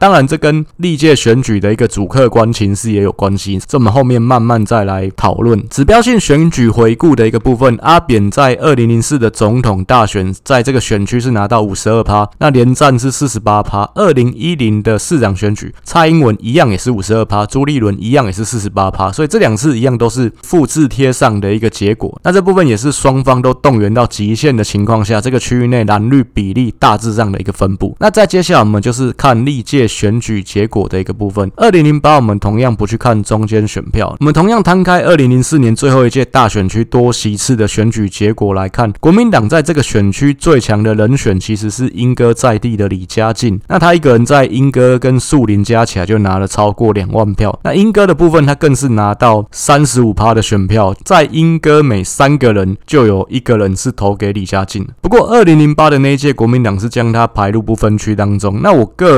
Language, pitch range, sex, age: Chinese, 105-140 Hz, male, 20-39